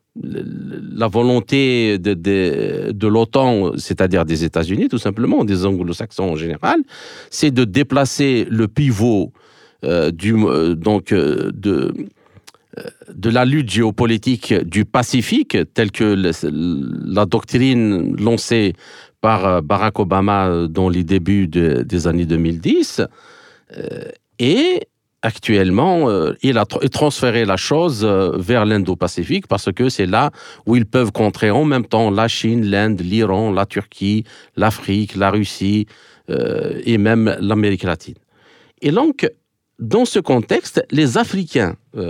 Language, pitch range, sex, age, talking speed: French, 100-135 Hz, male, 50-69, 125 wpm